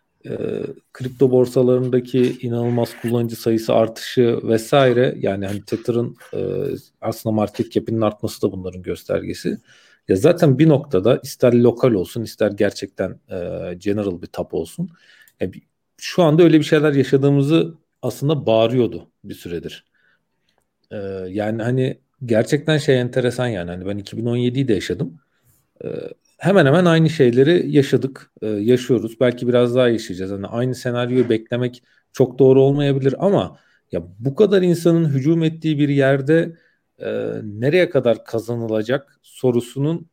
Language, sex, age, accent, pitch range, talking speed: Turkish, male, 40-59, native, 110-145 Hz, 135 wpm